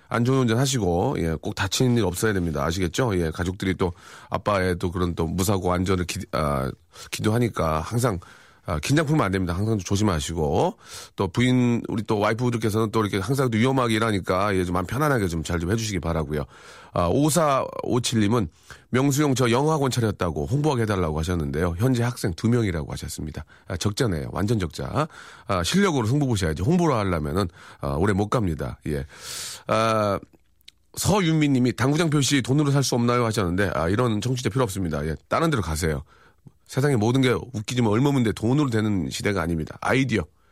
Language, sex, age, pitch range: Korean, male, 40-59, 90-130 Hz